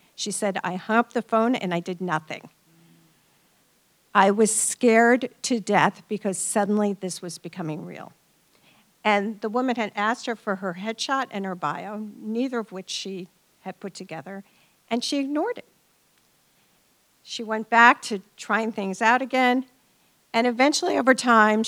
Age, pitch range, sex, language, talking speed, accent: 50-69, 195-245 Hz, female, English, 160 wpm, American